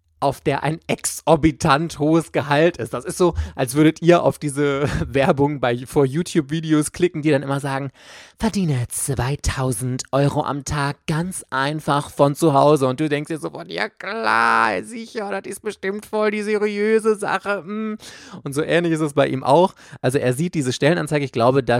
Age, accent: 20-39, German